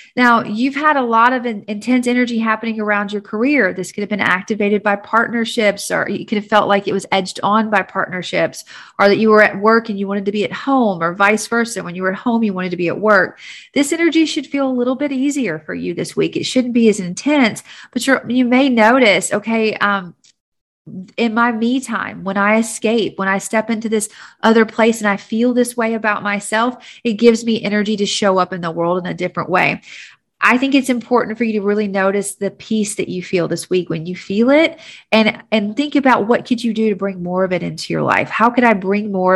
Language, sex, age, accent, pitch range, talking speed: English, female, 40-59, American, 195-235 Hz, 240 wpm